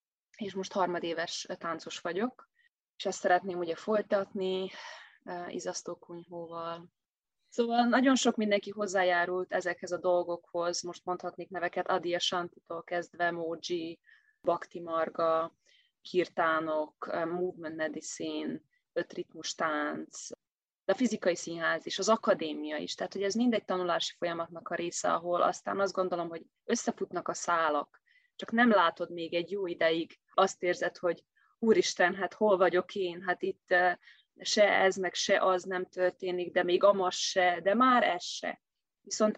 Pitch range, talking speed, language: 170-195 Hz, 140 wpm, Hungarian